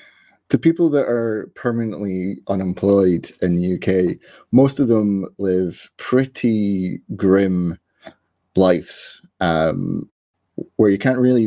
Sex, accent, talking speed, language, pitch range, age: male, British, 110 wpm, English, 90-110 Hz, 20-39